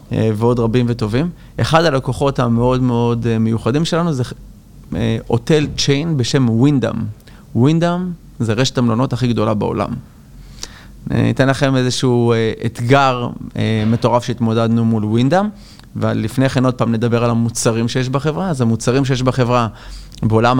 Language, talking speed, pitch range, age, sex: Hebrew, 125 wpm, 115-140 Hz, 30-49, male